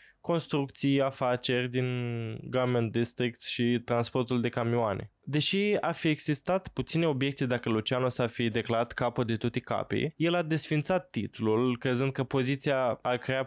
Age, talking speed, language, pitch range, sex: 20-39, 150 wpm, Romanian, 115-145 Hz, male